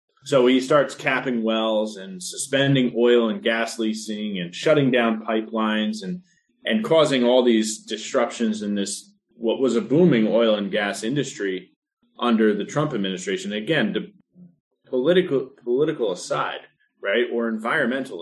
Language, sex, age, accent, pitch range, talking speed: English, male, 30-49, American, 110-145 Hz, 140 wpm